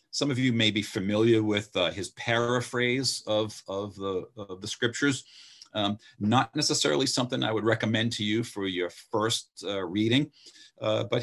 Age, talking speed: 50-69, 170 wpm